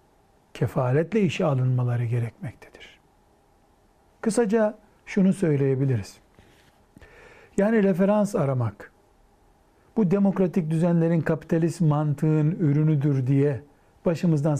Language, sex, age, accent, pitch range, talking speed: Turkish, male, 60-79, native, 130-180 Hz, 75 wpm